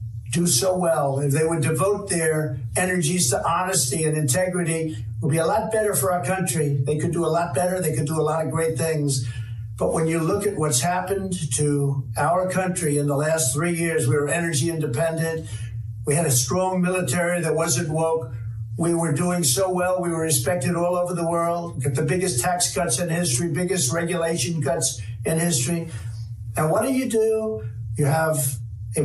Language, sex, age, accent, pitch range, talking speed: English, male, 60-79, American, 135-180 Hz, 200 wpm